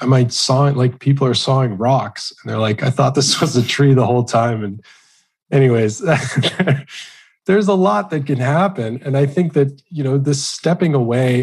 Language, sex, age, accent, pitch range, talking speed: English, male, 20-39, American, 115-140 Hz, 205 wpm